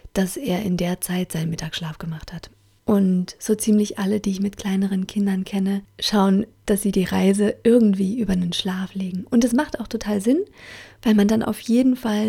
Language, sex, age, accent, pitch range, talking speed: German, female, 30-49, German, 185-220 Hz, 200 wpm